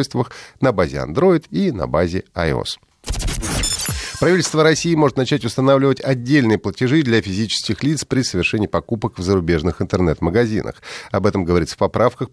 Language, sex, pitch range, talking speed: Russian, male, 95-145 Hz, 135 wpm